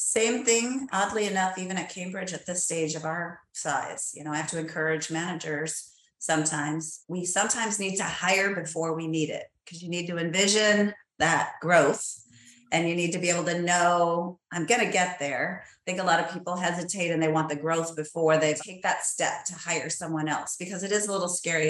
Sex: female